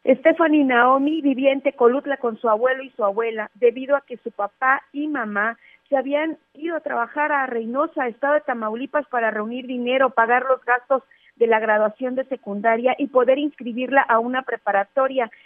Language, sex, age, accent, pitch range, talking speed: Spanish, female, 40-59, Mexican, 230-285 Hz, 175 wpm